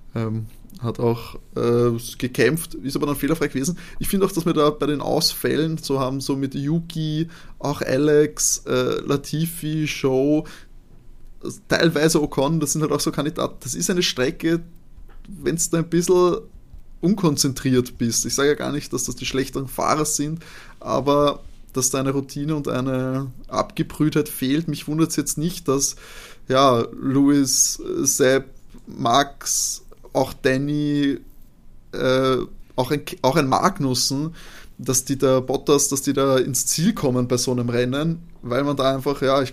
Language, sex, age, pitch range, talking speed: German, male, 20-39, 130-150 Hz, 160 wpm